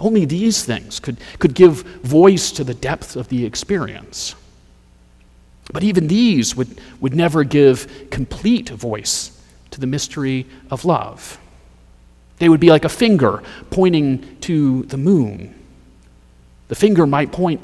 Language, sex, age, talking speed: English, male, 40-59, 140 wpm